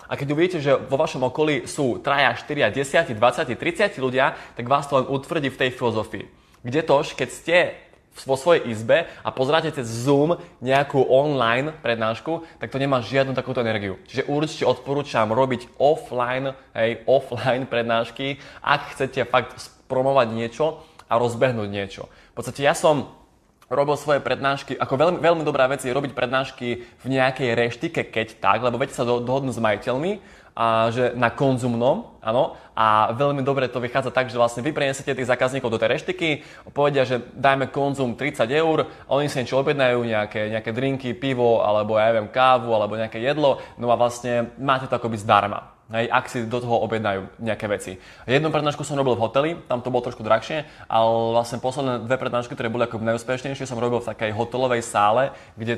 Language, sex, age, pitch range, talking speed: Slovak, male, 20-39, 115-140 Hz, 175 wpm